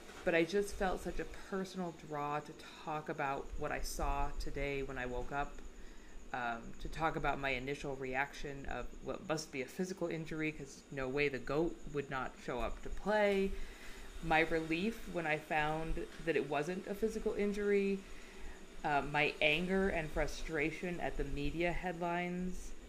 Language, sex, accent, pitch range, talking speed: English, female, American, 150-180 Hz, 170 wpm